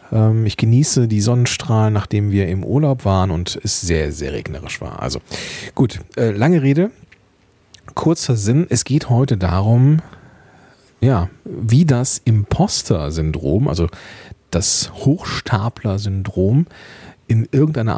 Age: 40-59